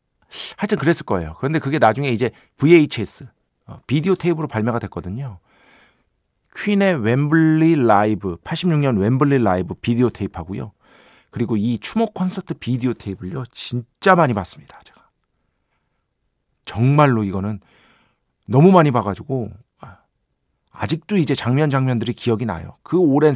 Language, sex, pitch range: Korean, male, 110-165 Hz